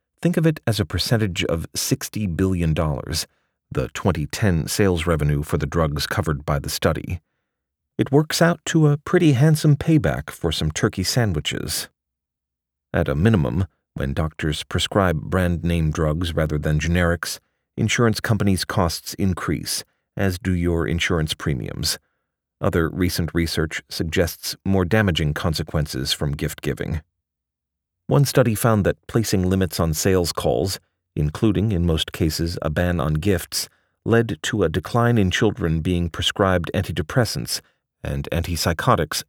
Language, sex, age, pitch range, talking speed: English, male, 40-59, 75-95 Hz, 135 wpm